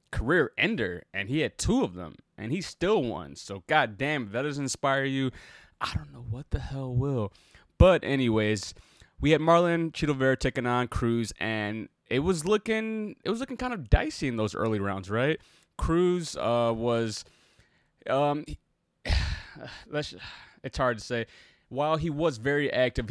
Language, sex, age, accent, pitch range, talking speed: English, male, 20-39, American, 110-130 Hz, 165 wpm